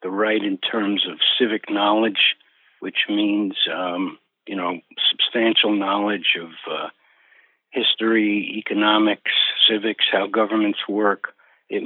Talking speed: 115 wpm